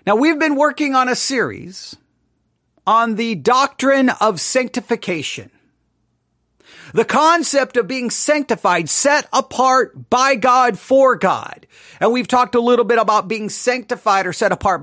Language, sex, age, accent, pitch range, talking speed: English, male, 40-59, American, 185-245 Hz, 140 wpm